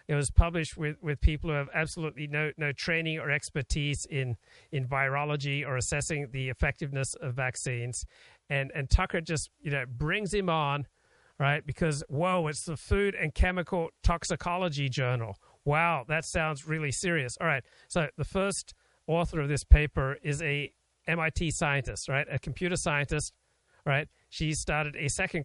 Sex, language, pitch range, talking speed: male, English, 140-165 Hz, 165 wpm